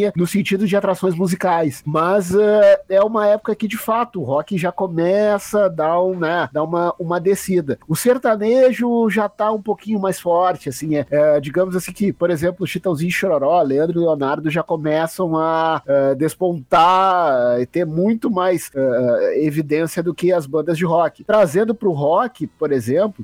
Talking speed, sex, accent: 180 wpm, male, Brazilian